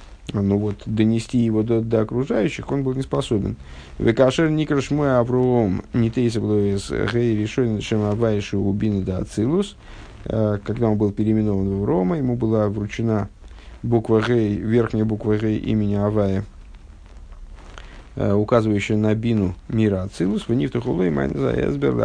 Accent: native